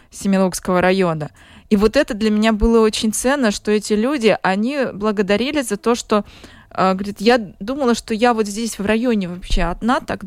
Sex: female